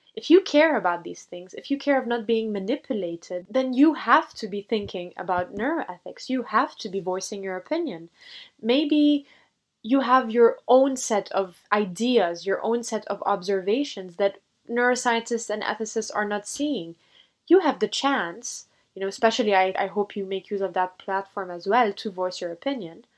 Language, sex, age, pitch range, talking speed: English, female, 20-39, 185-240 Hz, 180 wpm